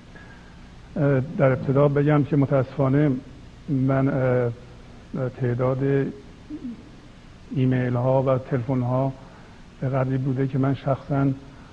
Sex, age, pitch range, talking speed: male, 50-69, 125-135 Hz, 85 wpm